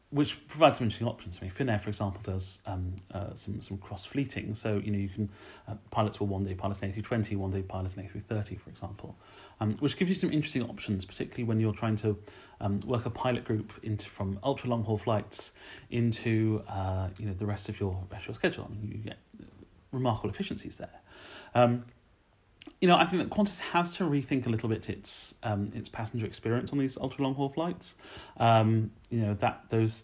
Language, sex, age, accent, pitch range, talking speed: English, male, 30-49, British, 100-120 Hz, 220 wpm